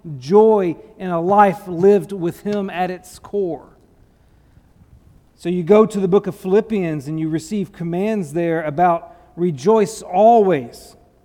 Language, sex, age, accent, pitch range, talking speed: English, male, 40-59, American, 180-220 Hz, 140 wpm